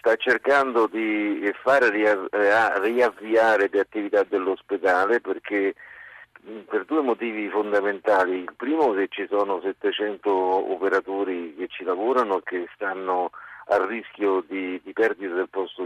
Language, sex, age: Italian, male, 50-69